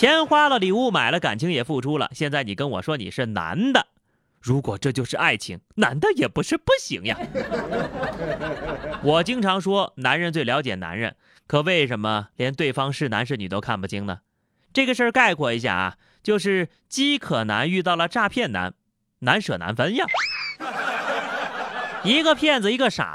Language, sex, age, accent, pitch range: Chinese, male, 30-49, native, 130-210 Hz